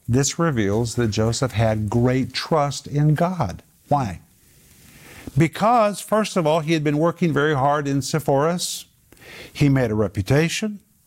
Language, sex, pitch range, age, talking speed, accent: English, male, 135-175 Hz, 50-69, 140 wpm, American